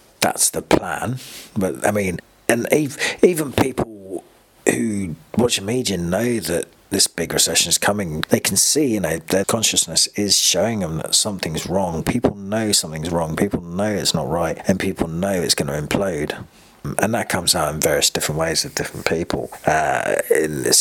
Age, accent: 40-59, British